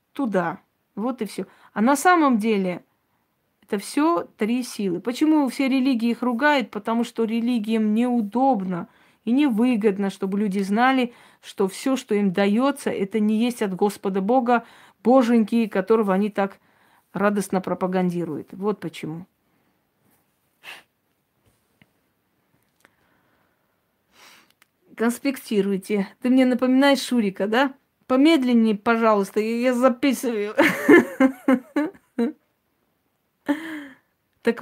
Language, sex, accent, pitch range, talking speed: Russian, female, native, 200-255 Hz, 95 wpm